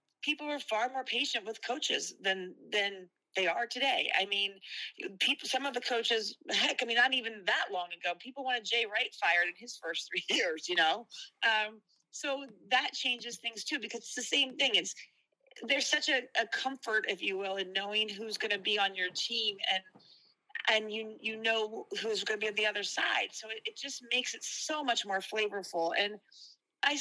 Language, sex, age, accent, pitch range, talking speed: English, female, 30-49, American, 190-260 Hz, 205 wpm